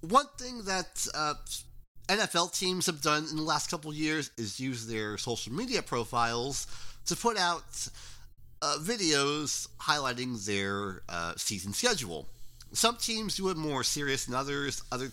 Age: 40-59